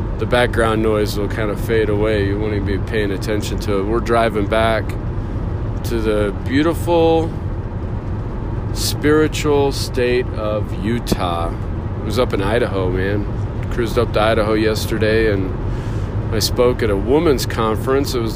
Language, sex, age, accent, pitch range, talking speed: English, male, 40-59, American, 105-115 Hz, 150 wpm